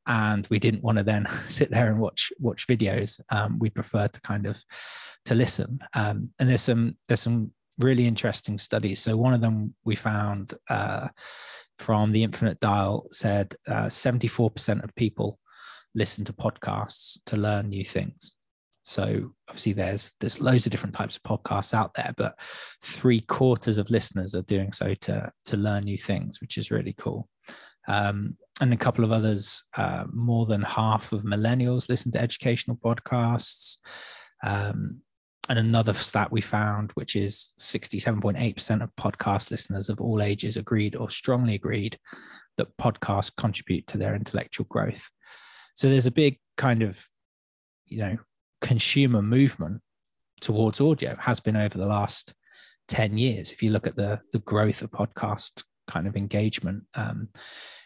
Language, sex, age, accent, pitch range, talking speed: English, male, 20-39, British, 105-120 Hz, 165 wpm